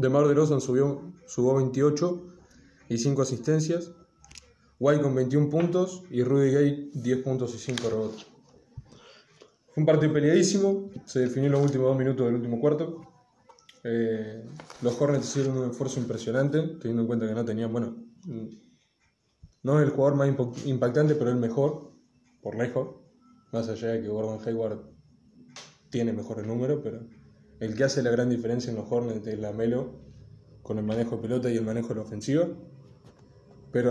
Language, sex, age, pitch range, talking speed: Spanish, male, 20-39, 115-145 Hz, 165 wpm